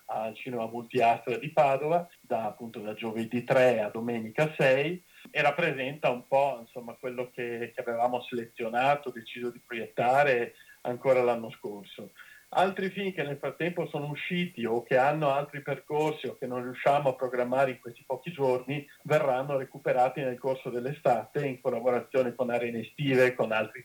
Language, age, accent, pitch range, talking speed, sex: Italian, 40-59, native, 120-140 Hz, 160 wpm, male